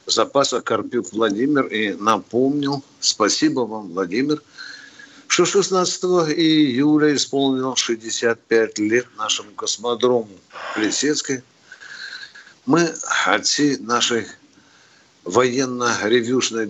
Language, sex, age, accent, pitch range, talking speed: Russian, male, 60-79, native, 120-160 Hz, 75 wpm